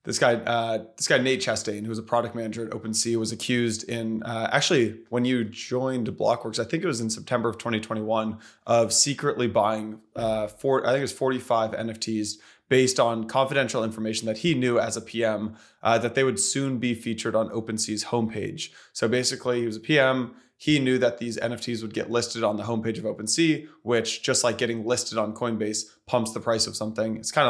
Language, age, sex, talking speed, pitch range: English, 20-39, male, 205 wpm, 110-125 Hz